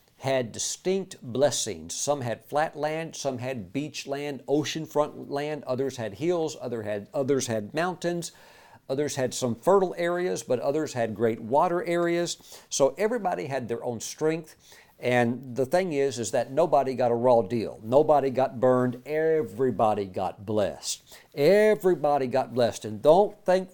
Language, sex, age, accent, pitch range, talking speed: English, male, 50-69, American, 120-155 Hz, 155 wpm